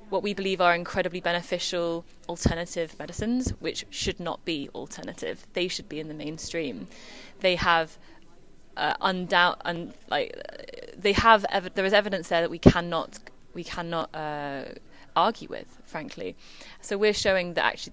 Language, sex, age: English, female, 20-39